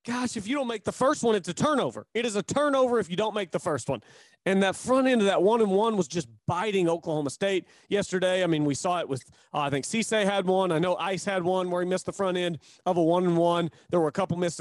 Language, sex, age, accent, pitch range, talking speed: English, male, 30-49, American, 170-225 Hz, 265 wpm